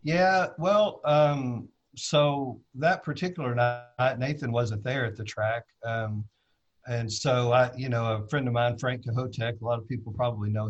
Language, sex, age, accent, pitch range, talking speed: English, male, 50-69, American, 110-125 Hz, 175 wpm